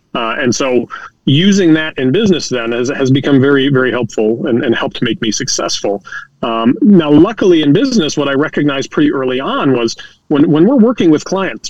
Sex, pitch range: male, 130-170 Hz